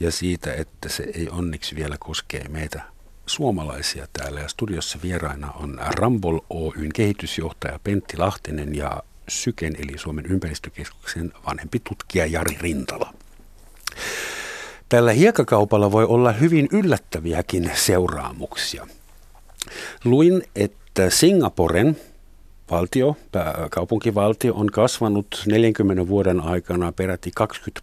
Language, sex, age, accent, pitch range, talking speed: Finnish, male, 60-79, native, 85-115 Hz, 105 wpm